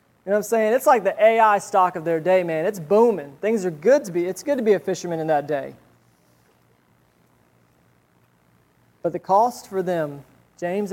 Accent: American